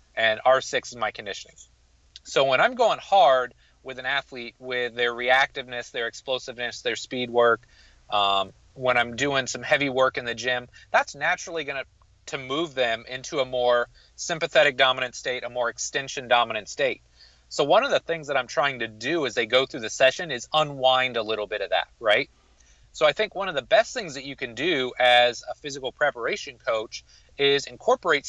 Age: 30-49